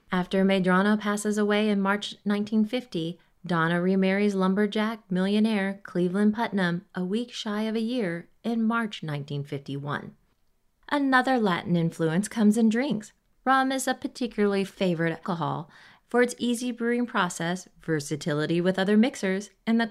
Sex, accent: female, American